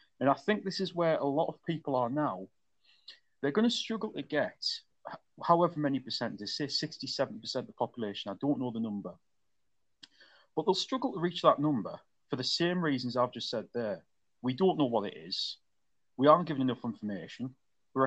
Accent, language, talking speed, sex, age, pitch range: British, English, 195 wpm, male, 30-49, 125-170 Hz